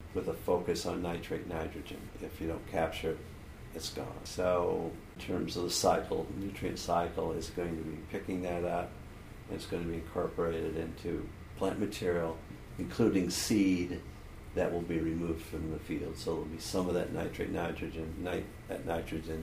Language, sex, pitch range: English, male, 80-90 Hz